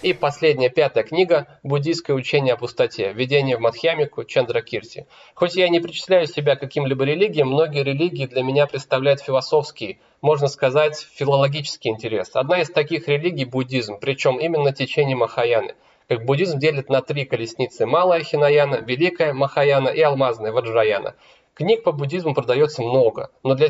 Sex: male